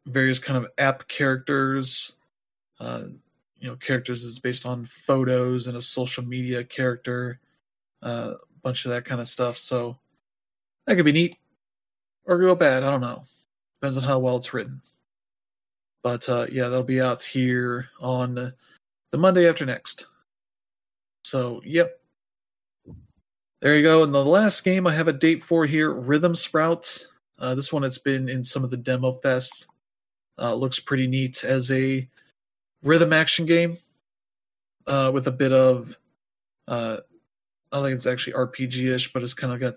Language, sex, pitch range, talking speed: English, male, 125-150 Hz, 165 wpm